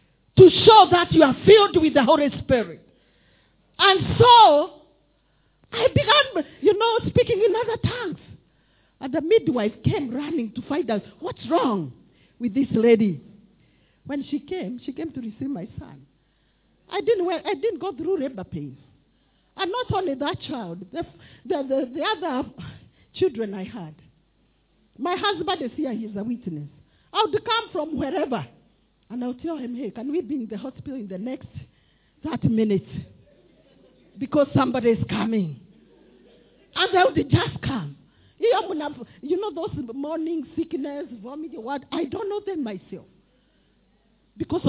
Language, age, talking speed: English, 50-69, 150 wpm